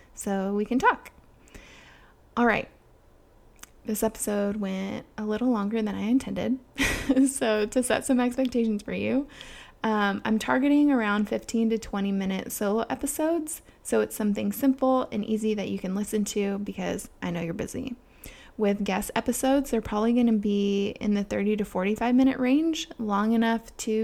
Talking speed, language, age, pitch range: 160 wpm, English, 20-39, 200-250 Hz